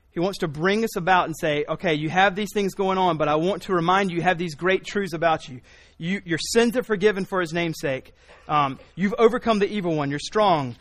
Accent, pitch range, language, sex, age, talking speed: American, 120-185 Hz, English, male, 30-49, 245 wpm